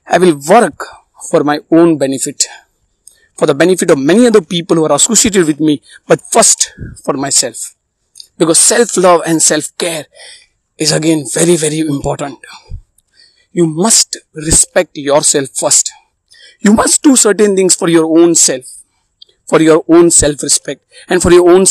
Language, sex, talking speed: Hindi, male, 160 wpm